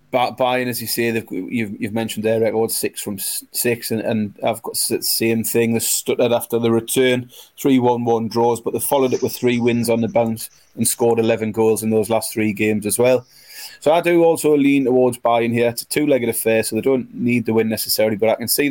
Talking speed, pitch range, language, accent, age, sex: 235 wpm, 110-125 Hz, English, British, 30-49, male